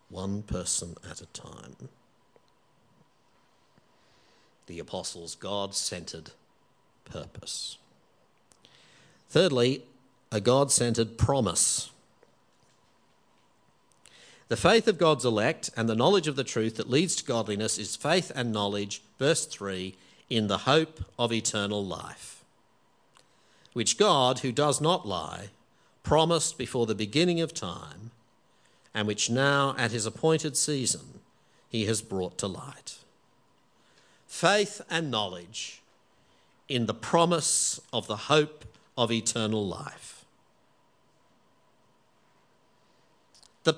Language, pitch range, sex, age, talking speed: English, 110-150 Hz, male, 50-69, 105 wpm